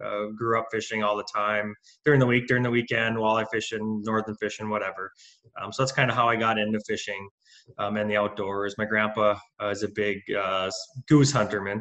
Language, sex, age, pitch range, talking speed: English, male, 20-39, 105-120 Hz, 220 wpm